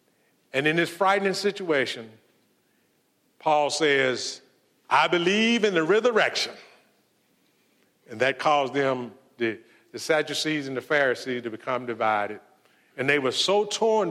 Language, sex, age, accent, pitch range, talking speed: English, male, 50-69, American, 135-200 Hz, 130 wpm